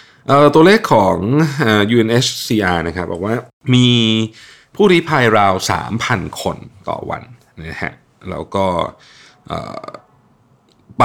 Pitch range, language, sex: 95-125 Hz, Thai, male